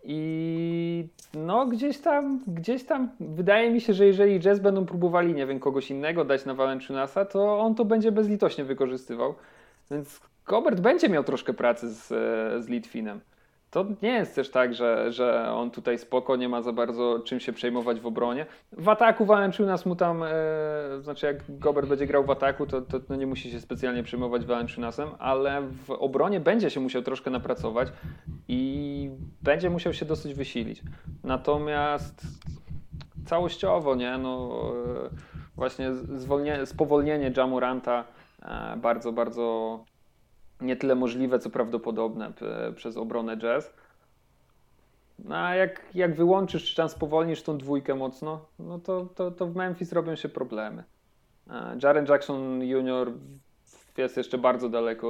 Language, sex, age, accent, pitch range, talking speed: Polish, male, 40-59, native, 125-170 Hz, 150 wpm